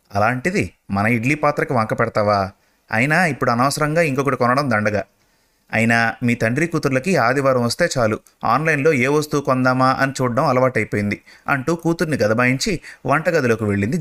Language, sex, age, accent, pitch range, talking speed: Telugu, male, 30-49, native, 110-145 Hz, 135 wpm